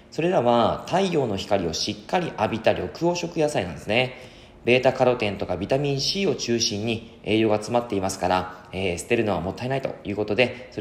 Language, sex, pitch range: Japanese, male, 95-135 Hz